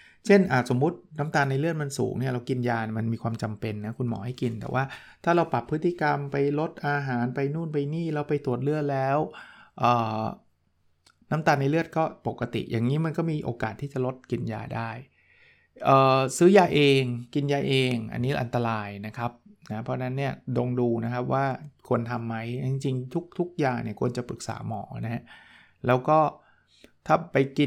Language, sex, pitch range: Thai, male, 120-145 Hz